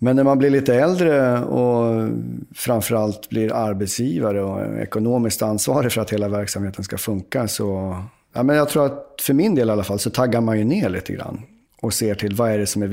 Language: English